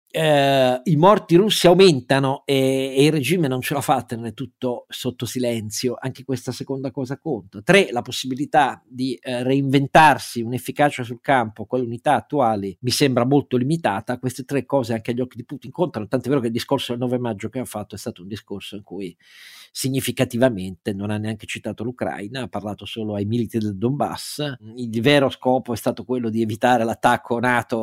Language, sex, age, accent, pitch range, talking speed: Italian, male, 40-59, native, 115-140 Hz, 190 wpm